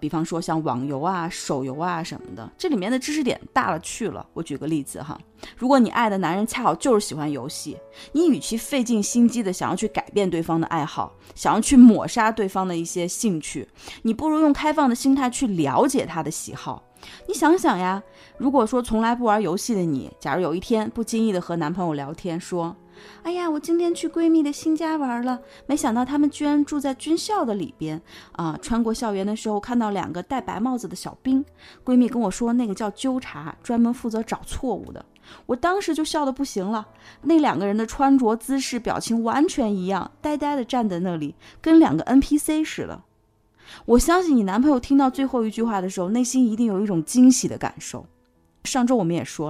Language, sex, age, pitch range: Chinese, female, 20-39, 175-270 Hz